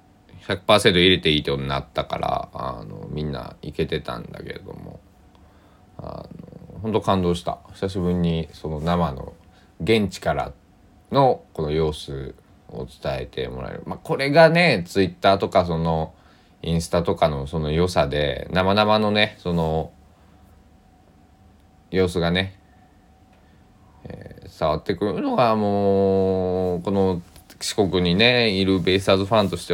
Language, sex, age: Japanese, male, 20-39